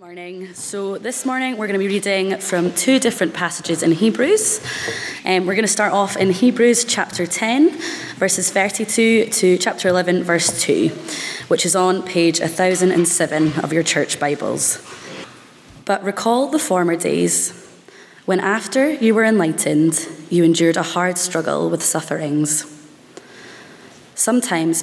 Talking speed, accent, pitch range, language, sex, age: 145 wpm, British, 160-200 Hz, English, female, 20-39